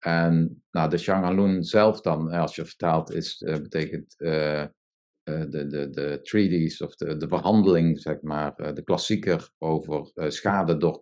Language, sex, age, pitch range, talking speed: Dutch, male, 50-69, 80-90 Hz, 170 wpm